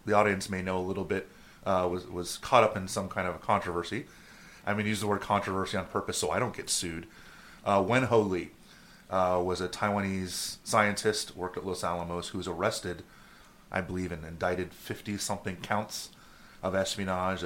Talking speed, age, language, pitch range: 195 wpm, 30-49, English, 90-110 Hz